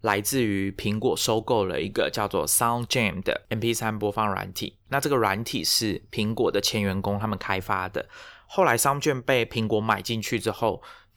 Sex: male